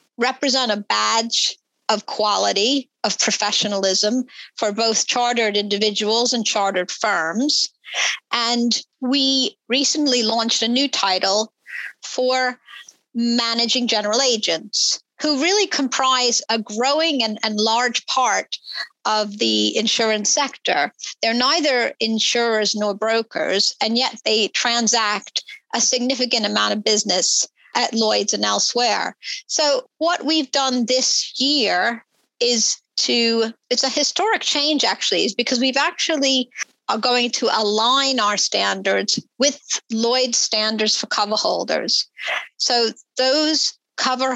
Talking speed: 120 wpm